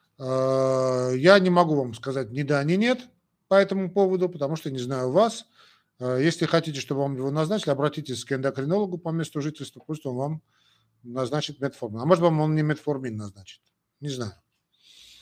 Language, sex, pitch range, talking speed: Russian, male, 125-170 Hz, 175 wpm